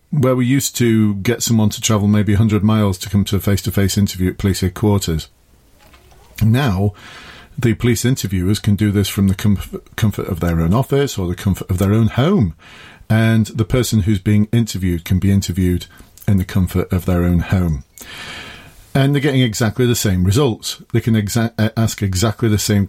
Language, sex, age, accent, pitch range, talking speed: English, male, 40-59, British, 100-115 Hz, 185 wpm